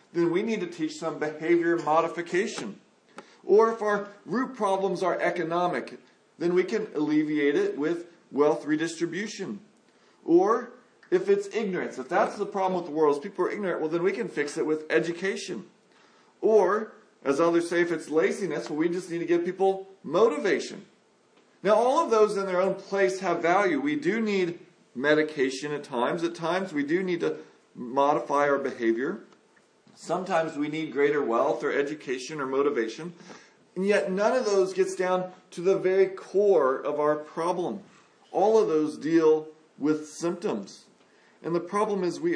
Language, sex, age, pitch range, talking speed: English, male, 40-59, 155-190 Hz, 170 wpm